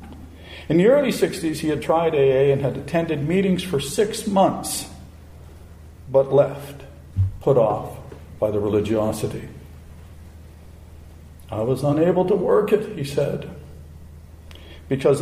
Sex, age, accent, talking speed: male, 60-79, American, 120 wpm